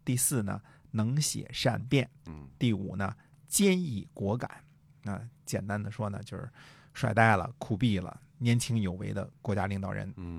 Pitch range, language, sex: 100-135 Hz, Chinese, male